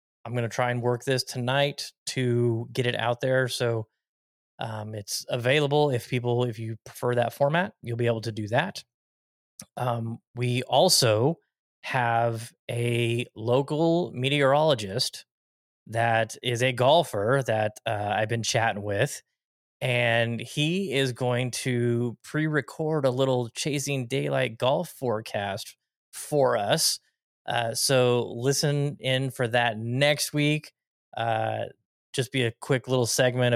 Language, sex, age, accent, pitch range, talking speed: English, male, 20-39, American, 115-140 Hz, 135 wpm